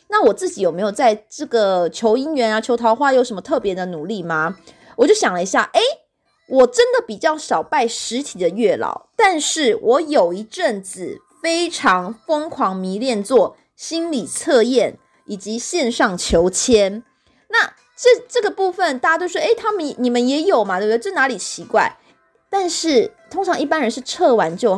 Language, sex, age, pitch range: Chinese, female, 20-39, 220-345 Hz